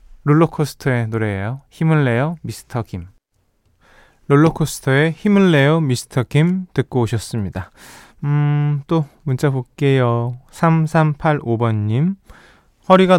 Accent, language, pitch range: native, Korean, 120-165 Hz